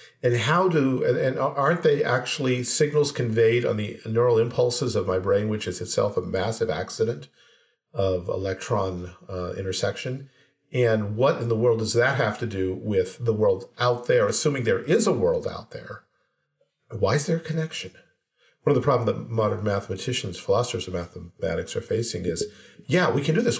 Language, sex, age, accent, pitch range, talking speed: English, male, 50-69, American, 105-155 Hz, 180 wpm